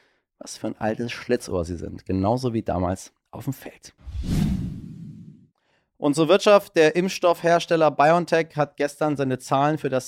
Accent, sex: German, male